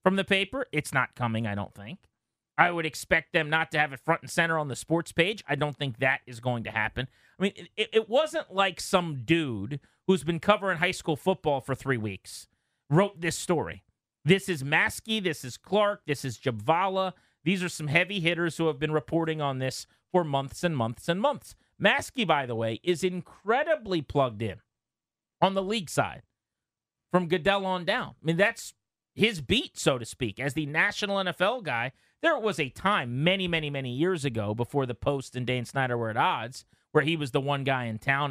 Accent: American